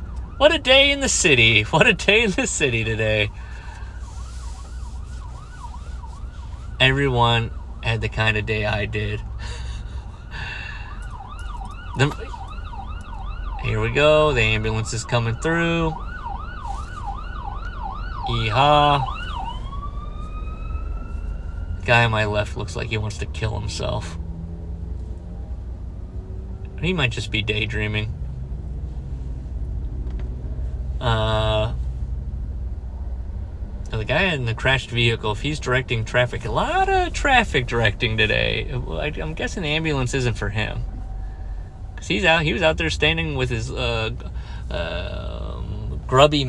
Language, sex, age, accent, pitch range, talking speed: English, male, 30-49, American, 80-125 Hz, 110 wpm